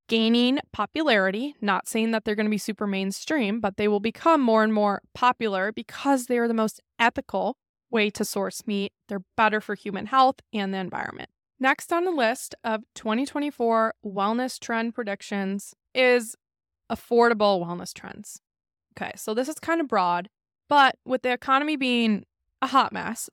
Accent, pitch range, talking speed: American, 200-245 Hz, 165 wpm